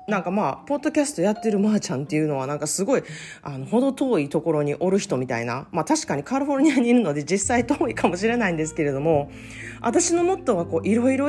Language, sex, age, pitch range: Japanese, female, 40-59, 150-235 Hz